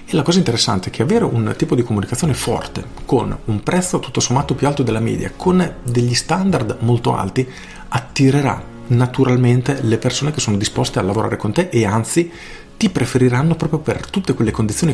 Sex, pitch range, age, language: male, 105-130 Hz, 40-59, Italian